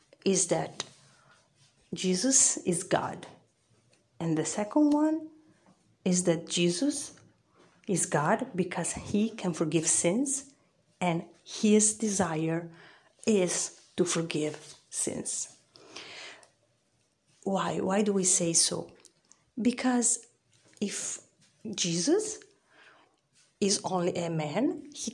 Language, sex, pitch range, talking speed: English, female, 175-235 Hz, 95 wpm